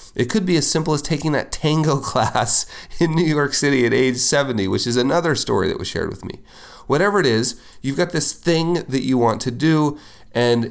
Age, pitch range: 30-49, 95-125 Hz